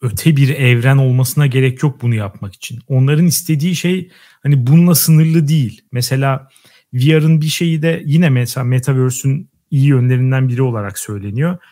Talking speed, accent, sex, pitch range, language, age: 150 wpm, native, male, 130-180 Hz, Turkish, 40-59